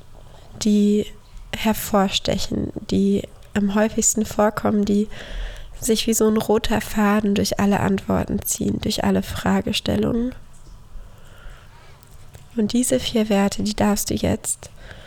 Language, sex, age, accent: German, female, 20-39, German